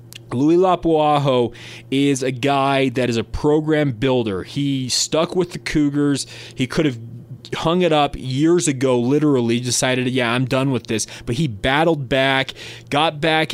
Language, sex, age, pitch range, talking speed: English, male, 20-39, 120-140 Hz, 160 wpm